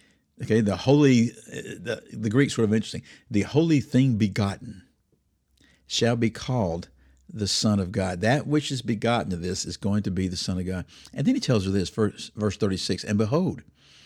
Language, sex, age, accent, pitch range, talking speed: English, male, 50-69, American, 100-130 Hz, 190 wpm